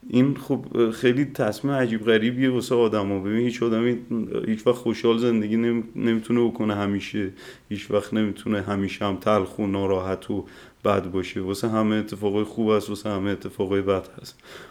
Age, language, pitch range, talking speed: 30-49, Persian, 105-125 Hz, 160 wpm